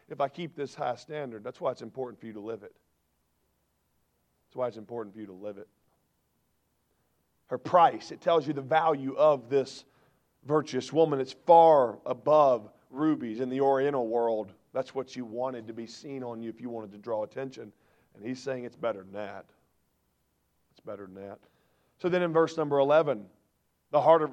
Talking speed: 190 wpm